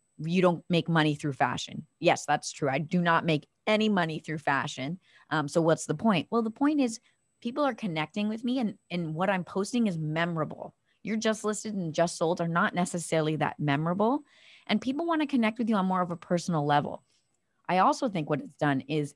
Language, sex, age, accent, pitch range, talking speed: English, female, 30-49, American, 150-200 Hz, 215 wpm